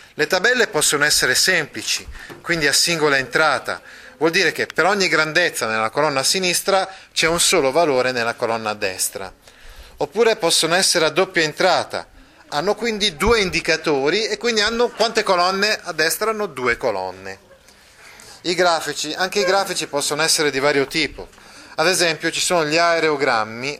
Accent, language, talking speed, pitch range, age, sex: native, Italian, 160 wpm, 140-180 Hz, 30-49, male